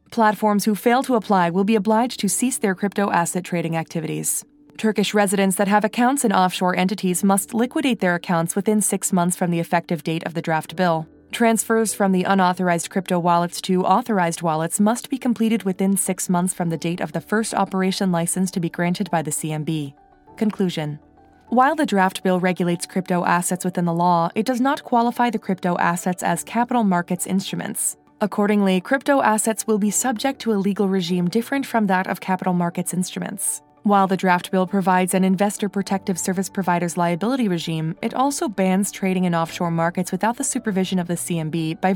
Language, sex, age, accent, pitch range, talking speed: English, female, 20-39, American, 175-220 Hz, 185 wpm